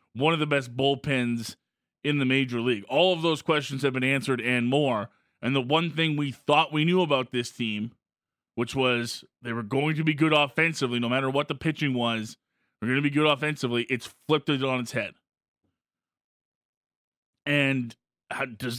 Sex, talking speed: male, 190 wpm